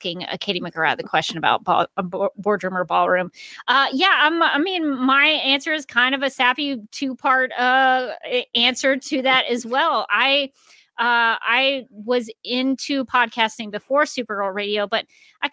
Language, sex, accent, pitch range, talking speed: English, female, American, 210-265 Hz, 150 wpm